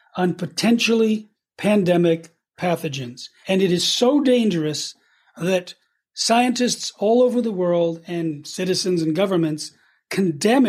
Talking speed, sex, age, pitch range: 110 wpm, male, 40-59, 165-220 Hz